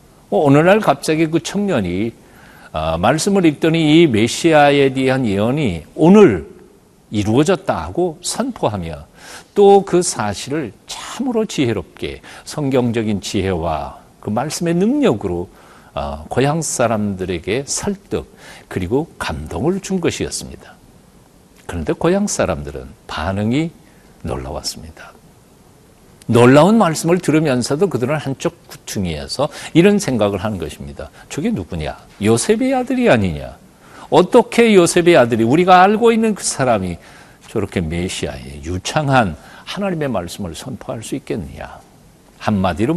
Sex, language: male, Korean